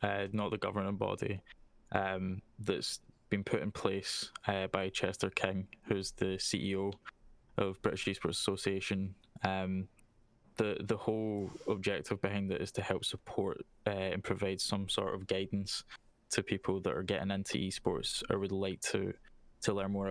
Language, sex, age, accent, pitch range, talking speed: English, male, 10-29, British, 95-105 Hz, 160 wpm